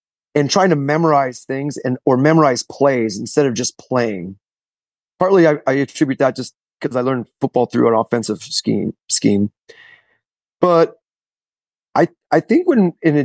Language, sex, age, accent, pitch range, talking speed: English, male, 30-49, American, 115-150 Hz, 160 wpm